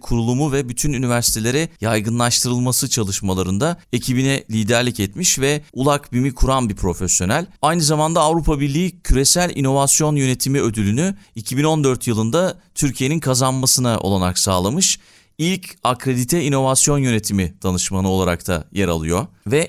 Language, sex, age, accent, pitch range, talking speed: Turkish, male, 40-59, native, 105-140 Hz, 120 wpm